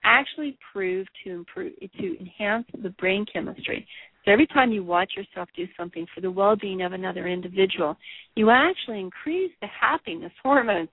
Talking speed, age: 165 wpm, 40-59